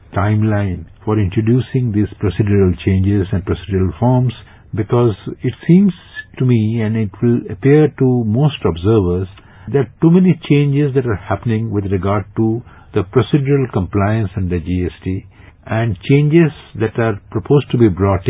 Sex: male